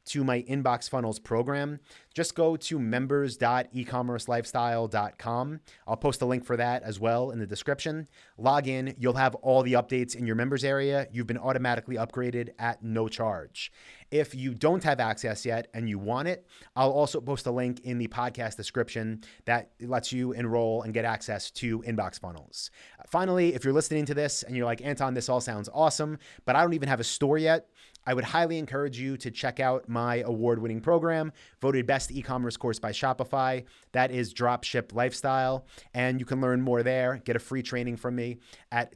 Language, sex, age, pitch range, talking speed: English, male, 30-49, 115-135 Hz, 190 wpm